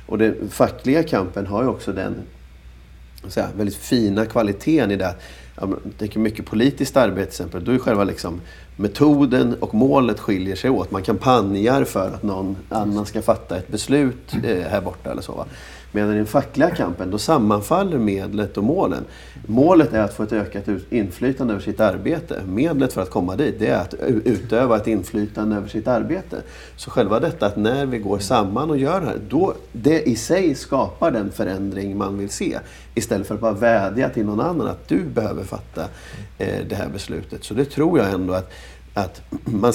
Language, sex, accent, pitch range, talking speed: English, male, Swedish, 95-110 Hz, 185 wpm